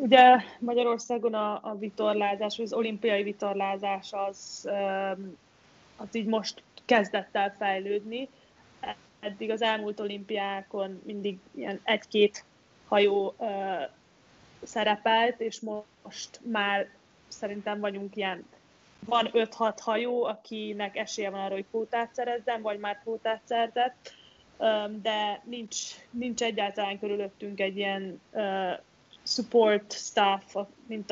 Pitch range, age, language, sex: 200-225 Hz, 20-39, Hungarian, female